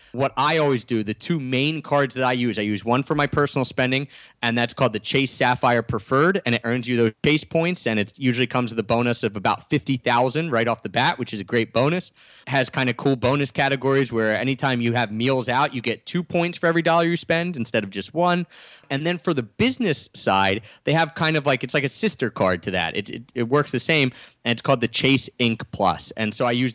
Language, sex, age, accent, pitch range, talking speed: English, male, 30-49, American, 115-145 Hz, 250 wpm